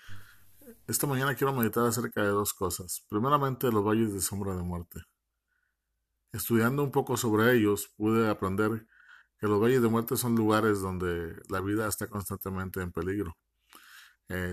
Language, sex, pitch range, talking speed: Spanish, male, 95-120 Hz, 155 wpm